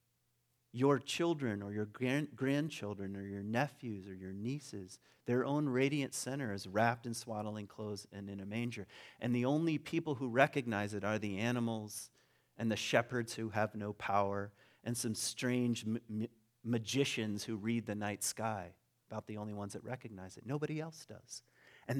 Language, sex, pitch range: English, male, 105-140 Hz